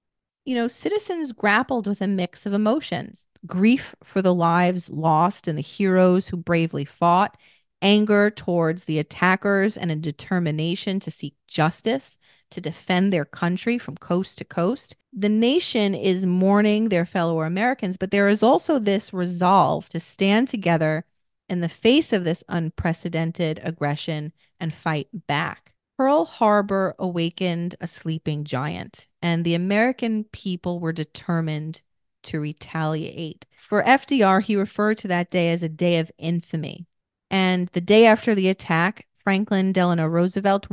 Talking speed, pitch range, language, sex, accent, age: 145 wpm, 160-200 Hz, English, female, American, 30-49